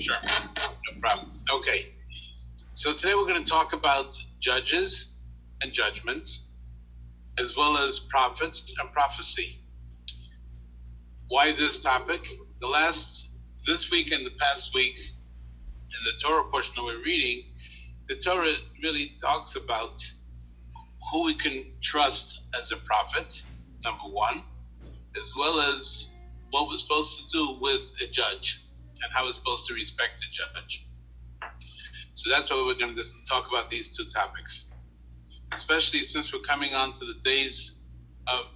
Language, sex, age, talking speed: English, male, 50-69, 140 wpm